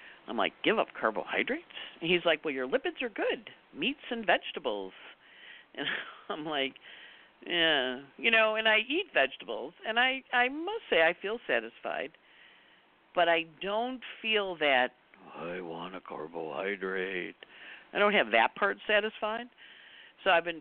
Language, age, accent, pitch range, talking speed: English, 50-69, American, 115-190 Hz, 150 wpm